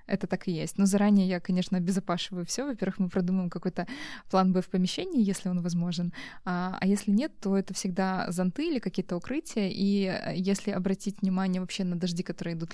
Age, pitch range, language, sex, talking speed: 20-39, 185-220 Hz, Russian, female, 190 wpm